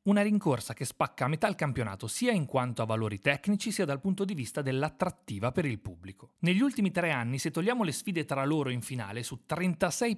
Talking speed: 220 wpm